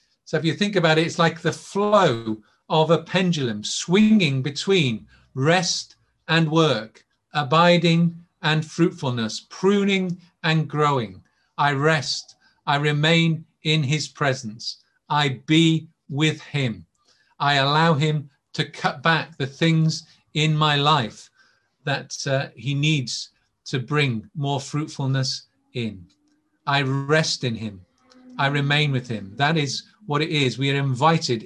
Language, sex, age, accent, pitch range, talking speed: English, male, 50-69, British, 125-160 Hz, 135 wpm